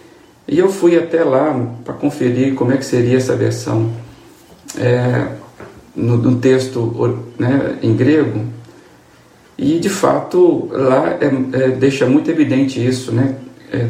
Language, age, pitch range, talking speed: Portuguese, 50-69, 120-150 Hz, 135 wpm